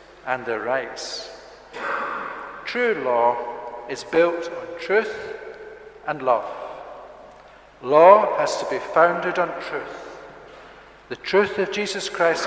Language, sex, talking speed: English, male, 110 wpm